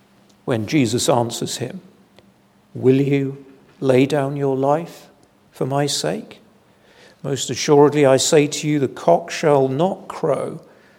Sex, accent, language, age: male, British, English, 50-69